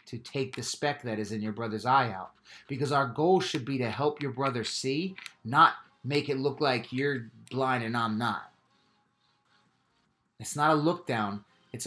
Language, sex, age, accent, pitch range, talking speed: English, male, 30-49, American, 120-160 Hz, 185 wpm